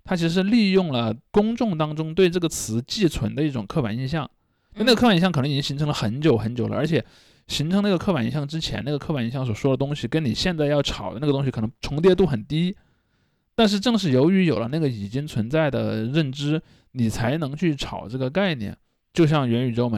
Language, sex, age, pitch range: Chinese, male, 20-39, 120-165 Hz